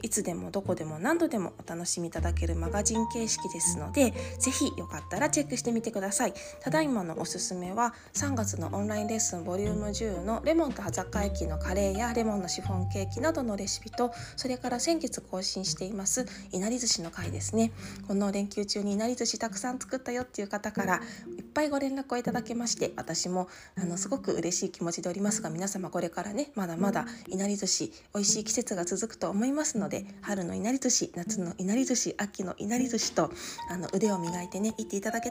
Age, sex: 20-39, female